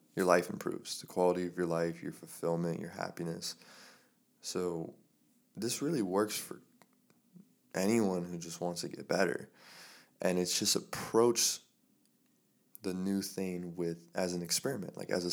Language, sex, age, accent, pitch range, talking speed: English, male, 20-39, American, 85-100 Hz, 150 wpm